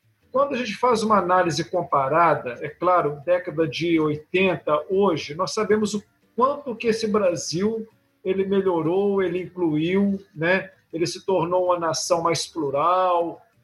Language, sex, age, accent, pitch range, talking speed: Portuguese, male, 50-69, Brazilian, 170-230 Hz, 135 wpm